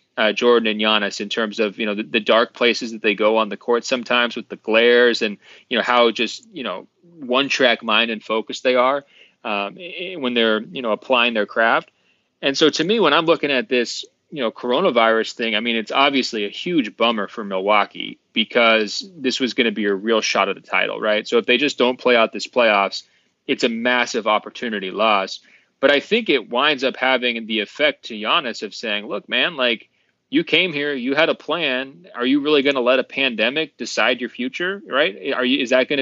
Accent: American